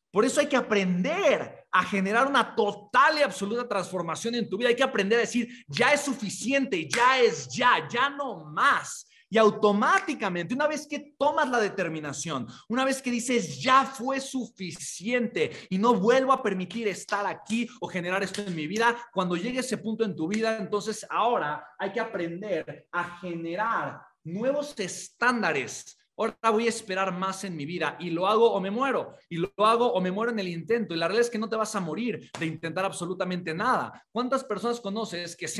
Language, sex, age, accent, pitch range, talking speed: Spanish, male, 30-49, Mexican, 185-240 Hz, 195 wpm